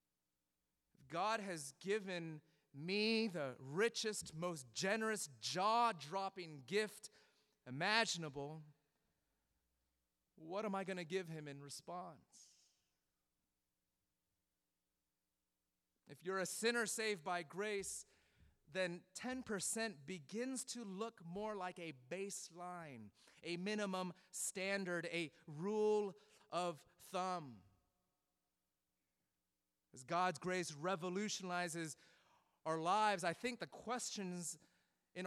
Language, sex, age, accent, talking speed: English, male, 30-49, American, 90 wpm